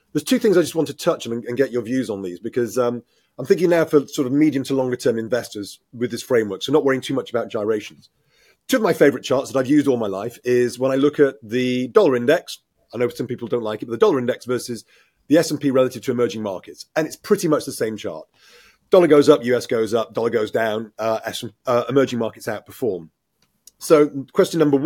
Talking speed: 240 wpm